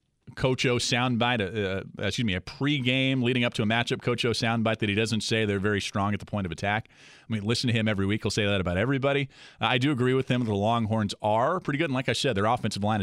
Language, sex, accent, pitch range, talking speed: English, male, American, 105-145 Hz, 265 wpm